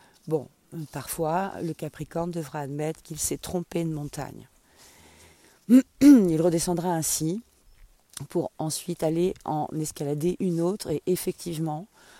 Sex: female